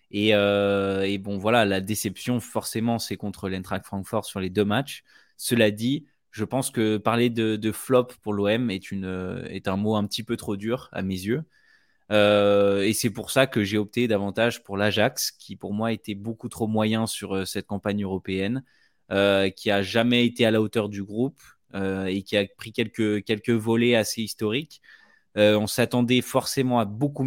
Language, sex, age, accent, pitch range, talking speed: French, male, 20-39, French, 100-120 Hz, 195 wpm